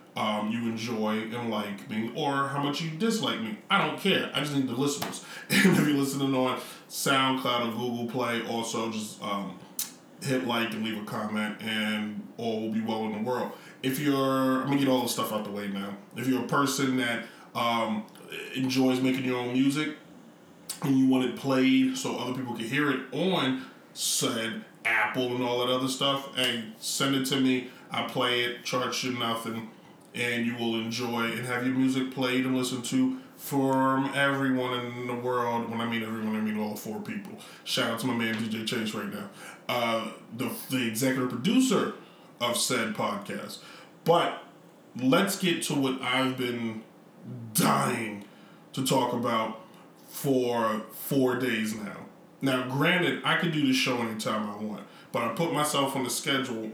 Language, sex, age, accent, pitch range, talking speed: English, male, 20-39, American, 115-135 Hz, 185 wpm